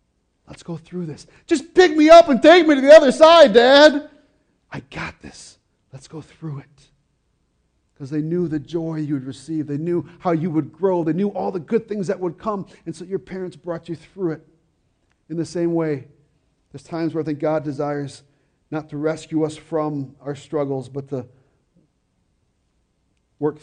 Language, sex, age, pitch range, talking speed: English, male, 40-59, 140-175 Hz, 190 wpm